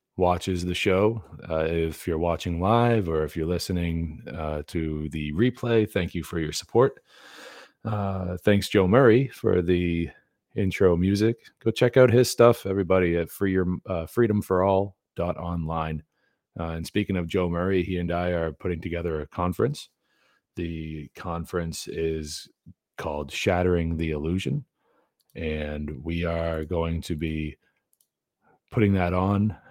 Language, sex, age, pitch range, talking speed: English, male, 40-59, 80-95 Hz, 135 wpm